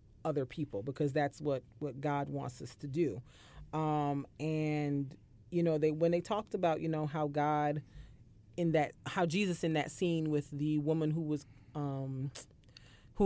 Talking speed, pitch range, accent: 170 wpm, 145-165 Hz, American